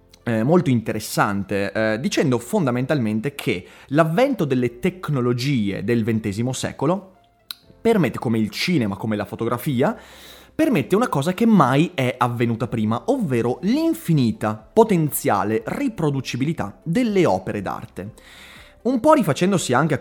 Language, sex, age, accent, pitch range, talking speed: Italian, male, 30-49, native, 120-175 Hz, 115 wpm